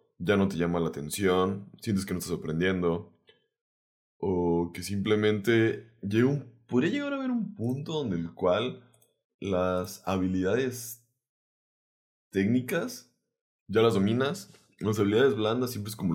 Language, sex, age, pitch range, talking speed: Spanish, male, 20-39, 95-125 Hz, 130 wpm